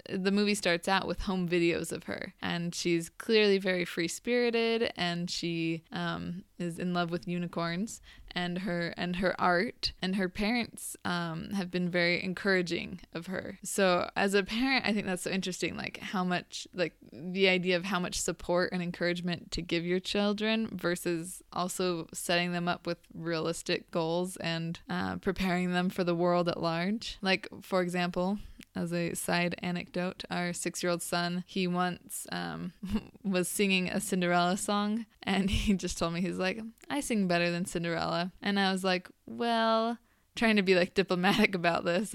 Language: English